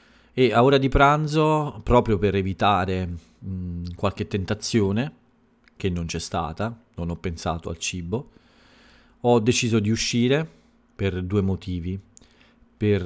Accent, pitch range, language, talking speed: native, 90-110 Hz, Italian, 130 wpm